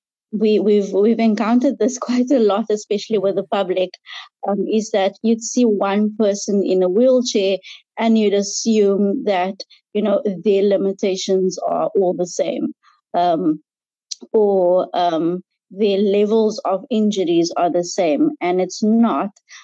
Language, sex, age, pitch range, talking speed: English, female, 20-39, 185-230 Hz, 145 wpm